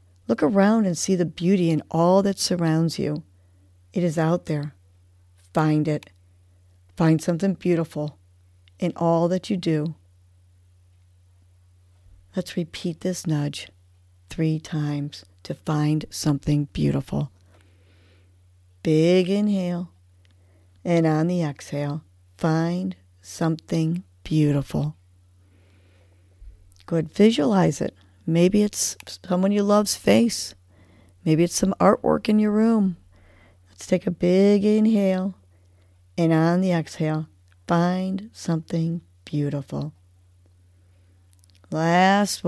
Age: 50-69